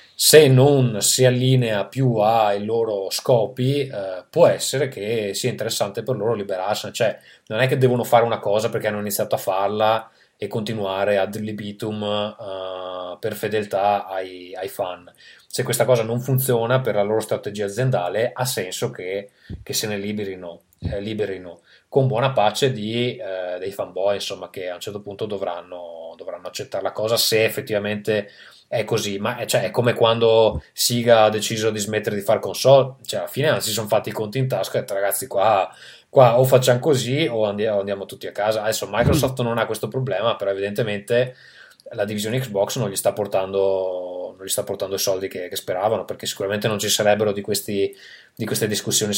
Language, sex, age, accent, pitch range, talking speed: Italian, male, 20-39, native, 100-120 Hz, 185 wpm